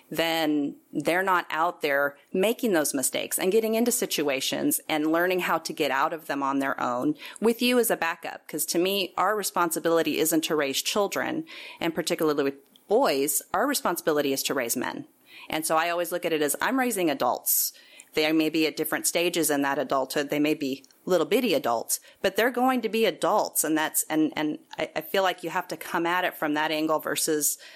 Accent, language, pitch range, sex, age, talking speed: American, English, 155-225 Hz, female, 30-49, 210 wpm